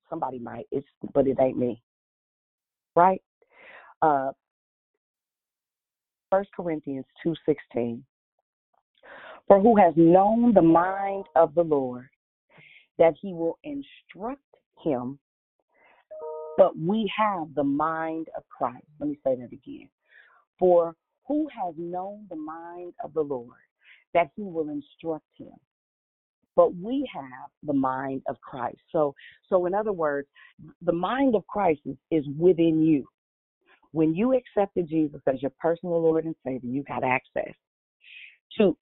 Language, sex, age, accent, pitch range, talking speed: English, female, 40-59, American, 150-210 Hz, 130 wpm